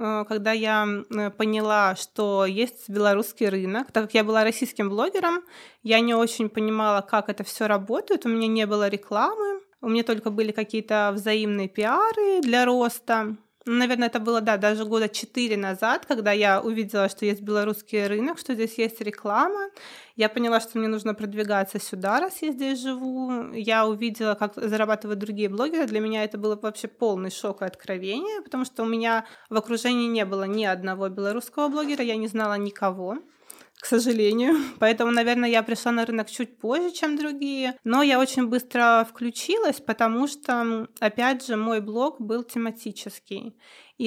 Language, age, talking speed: Russian, 20-39, 165 wpm